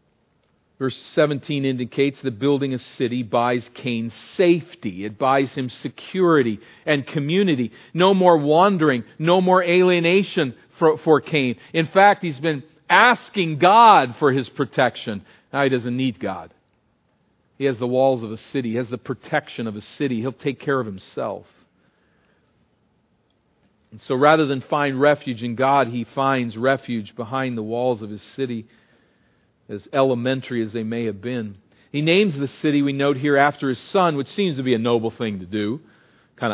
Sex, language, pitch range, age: male, English, 120-155 Hz, 50-69